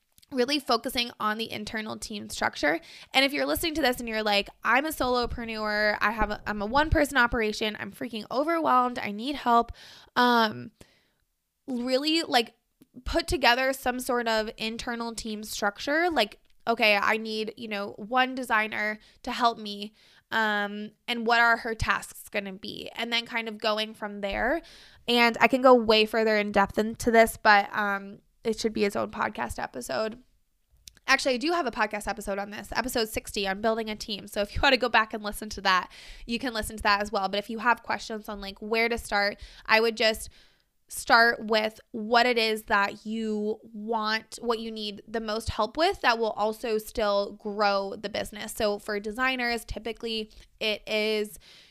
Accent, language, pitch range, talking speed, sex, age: American, English, 210-240 Hz, 185 wpm, female, 20-39